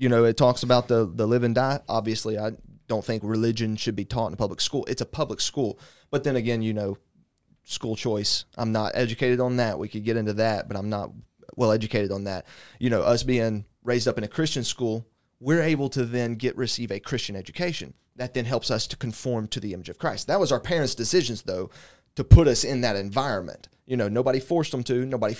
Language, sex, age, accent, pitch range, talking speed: English, male, 30-49, American, 110-135 Hz, 235 wpm